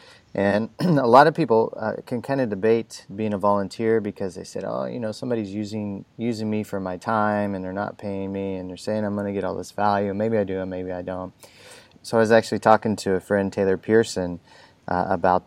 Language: English